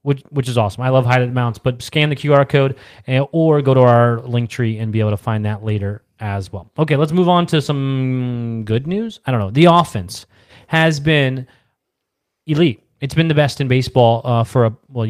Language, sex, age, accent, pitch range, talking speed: English, male, 30-49, American, 110-135 Hz, 220 wpm